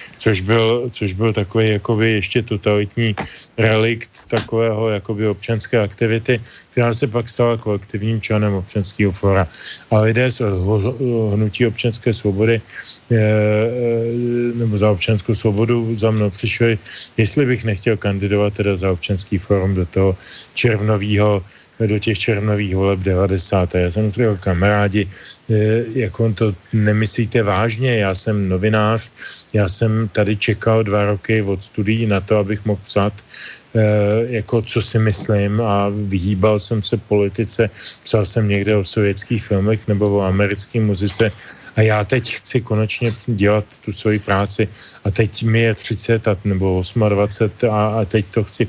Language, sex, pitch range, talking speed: Slovak, male, 100-115 Hz, 140 wpm